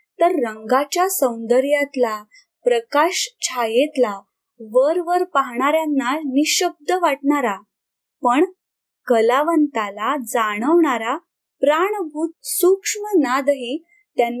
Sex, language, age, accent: female, Marathi, 20-39, native